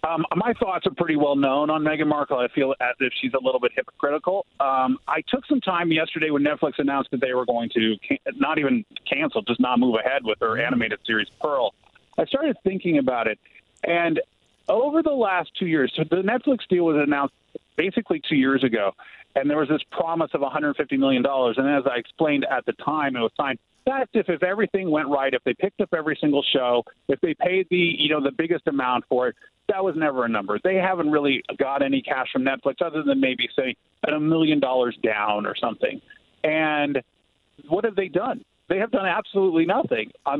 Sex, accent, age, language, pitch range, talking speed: male, American, 40-59, English, 135-185 Hz, 210 wpm